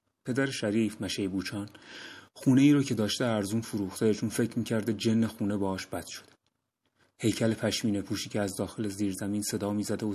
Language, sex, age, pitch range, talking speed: Persian, male, 30-49, 100-115 Hz, 170 wpm